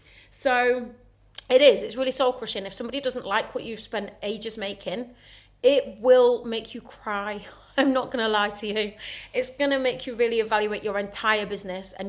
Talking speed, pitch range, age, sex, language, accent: 195 wpm, 200-260 Hz, 30-49, female, English, British